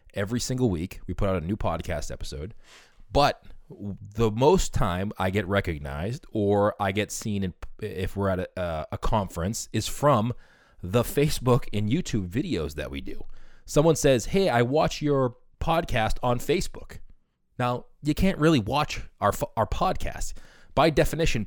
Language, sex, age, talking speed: English, male, 20-39, 155 wpm